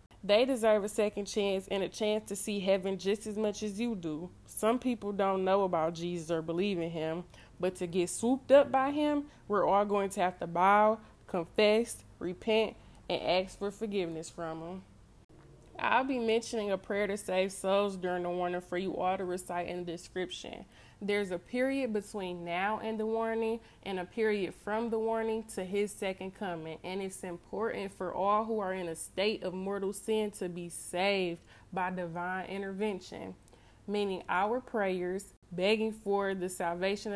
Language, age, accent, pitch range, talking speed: English, 20-39, American, 180-210 Hz, 180 wpm